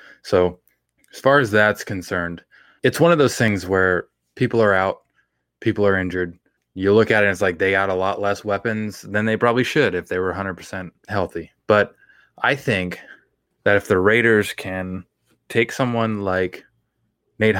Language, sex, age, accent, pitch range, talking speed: English, male, 20-39, American, 95-110 Hz, 175 wpm